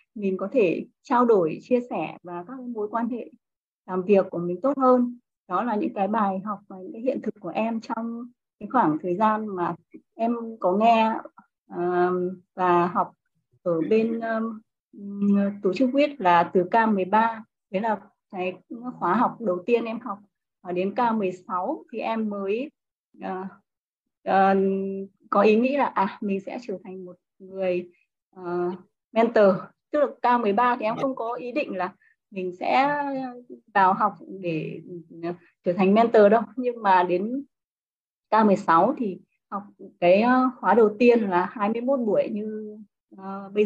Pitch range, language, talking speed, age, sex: 185-240 Hz, Vietnamese, 155 wpm, 20-39, female